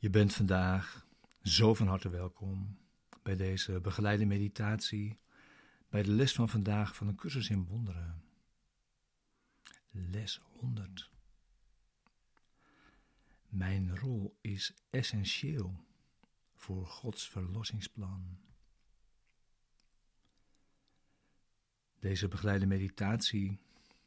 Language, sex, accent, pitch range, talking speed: Dutch, male, Dutch, 95-110 Hz, 80 wpm